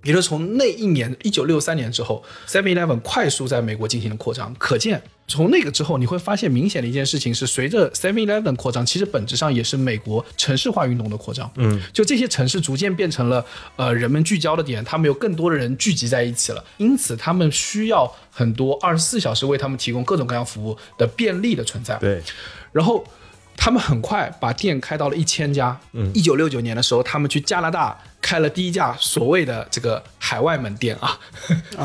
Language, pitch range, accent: Chinese, 120-170 Hz, native